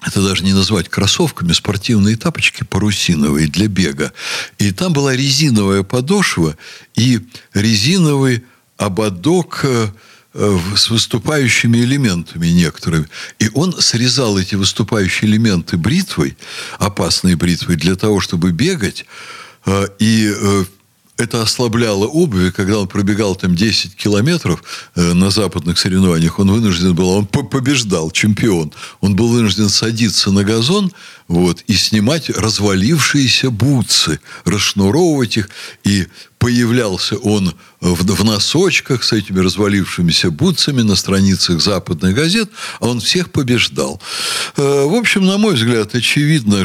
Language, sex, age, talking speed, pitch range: Russian, male, 60-79, 115 wpm, 95-135 Hz